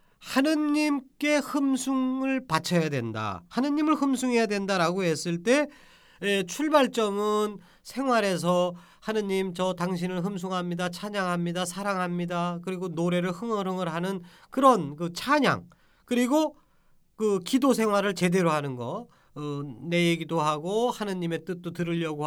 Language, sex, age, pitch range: Korean, male, 40-59, 170-240 Hz